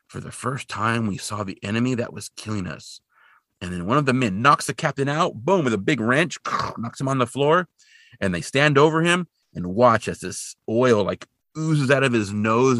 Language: English